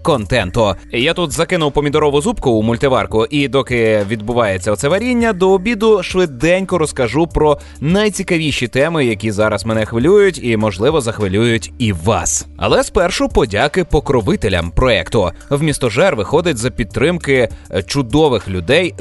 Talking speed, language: 125 wpm, Russian